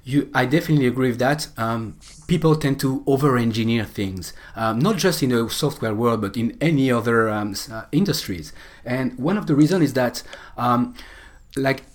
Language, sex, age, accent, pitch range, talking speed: English, male, 40-59, French, 115-150 Hz, 175 wpm